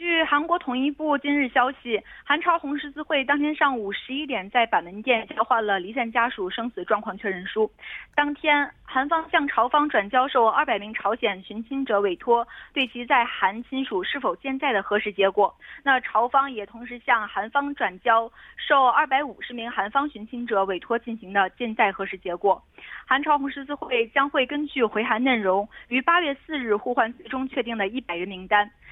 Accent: Chinese